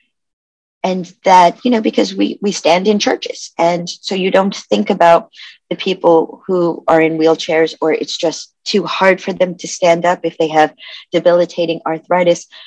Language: English